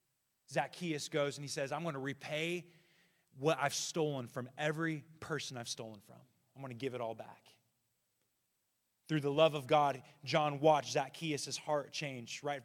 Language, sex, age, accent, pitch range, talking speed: English, male, 30-49, American, 135-165 Hz, 160 wpm